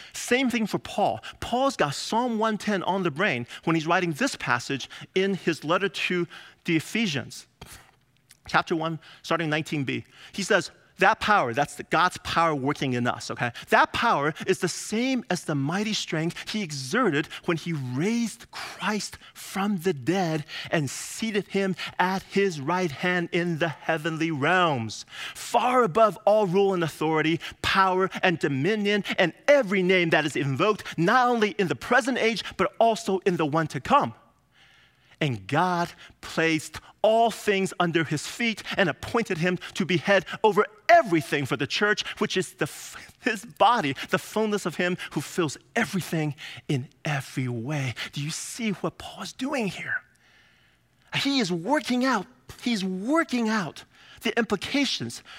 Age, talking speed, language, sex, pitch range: 30-49, 155 wpm, English, male, 160-220 Hz